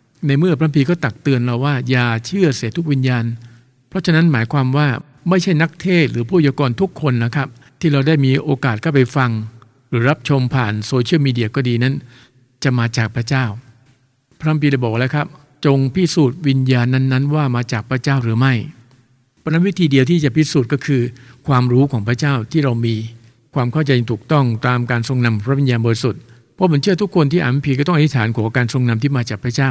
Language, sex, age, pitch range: English, male, 60-79, 125-150 Hz